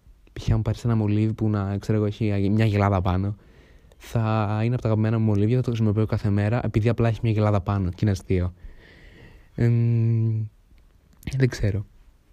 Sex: male